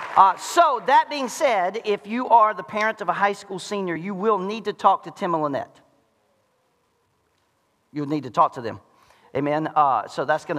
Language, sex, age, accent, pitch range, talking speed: English, male, 40-59, American, 200-305 Hz, 200 wpm